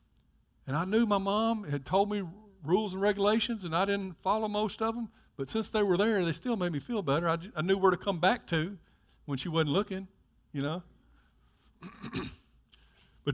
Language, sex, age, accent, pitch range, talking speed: English, male, 50-69, American, 130-205 Hz, 200 wpm